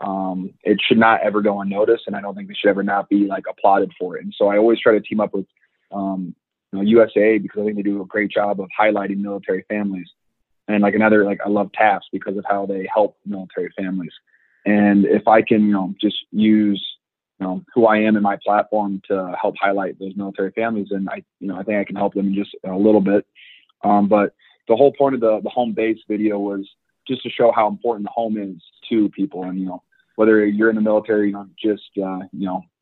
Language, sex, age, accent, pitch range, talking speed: English, male, 20-39, American, 95-105 Hz, 240 wpm